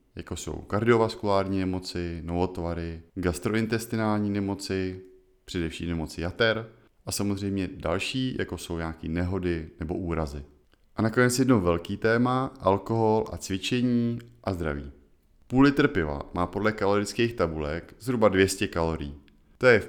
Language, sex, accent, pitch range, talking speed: Czech, male, native, 85-120 Hz, 125 wpm